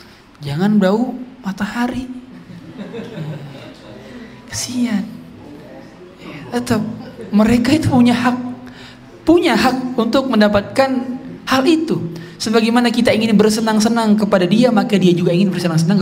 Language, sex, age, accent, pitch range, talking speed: Indonesian, male, 20-39, native, 155-225 Hz, 95 wpm